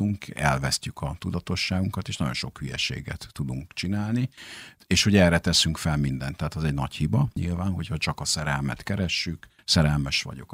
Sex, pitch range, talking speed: male, 75-95 Hz, 160 wpm